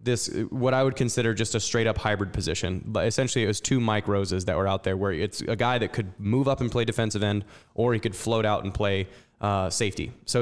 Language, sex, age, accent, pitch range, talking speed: English, male, 20-39, American, 105-125 Hz, 255 wpm